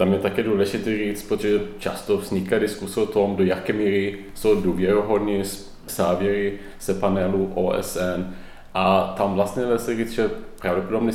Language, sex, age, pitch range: Czech, male, 30-49, 95-115 Hz